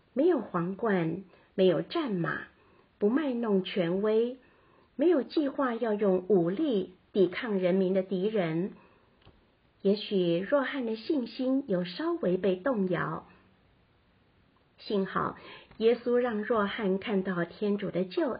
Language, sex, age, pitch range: Chinese, female, 50-69, 180-240 Hz